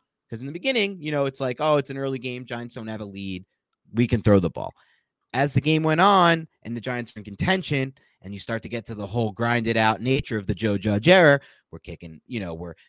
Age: 30-49